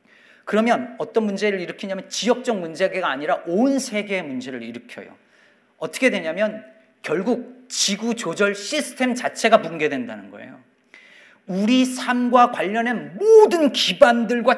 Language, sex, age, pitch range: Korean, male, 40-59, 185-245 Hz